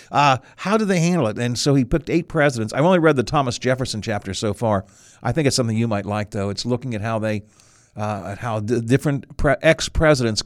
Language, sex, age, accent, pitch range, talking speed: English, male, 50-69, American, 105-150 Hz, 230 wpm